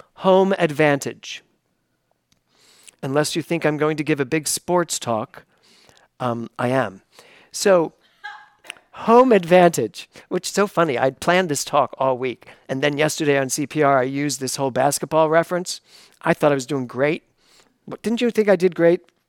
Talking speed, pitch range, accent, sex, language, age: 165 wpm, 145-200 Hz, American, male, English, 50-69